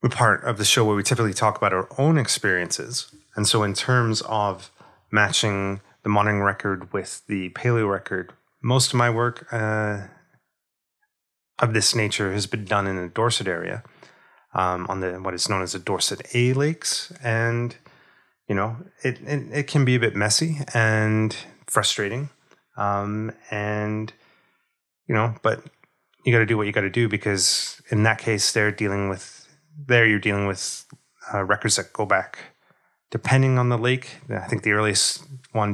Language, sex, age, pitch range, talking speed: English, male, 30-49, 100-125 Hz, 175 wpm